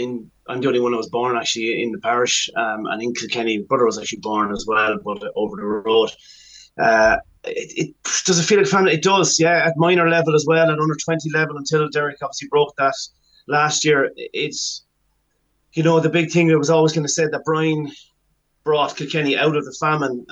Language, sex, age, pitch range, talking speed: English, male, 30-49, 125-155 Hz, 220 wpm